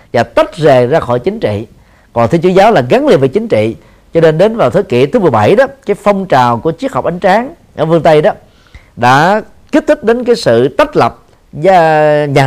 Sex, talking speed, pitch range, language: male, 225 wpm, 125-195 Hz, Vietnamese